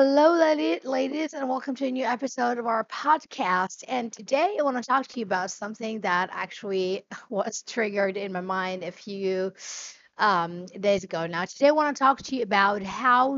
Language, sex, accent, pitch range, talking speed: English, female, American, 190-245 Hz, 195 wpm